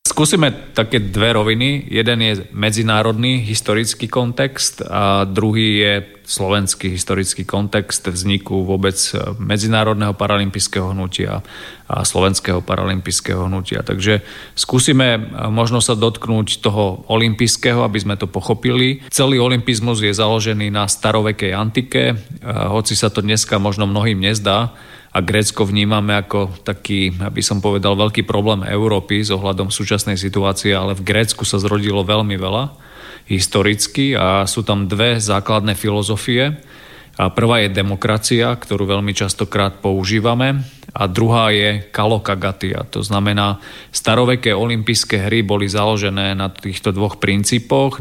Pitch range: 100-115 Hz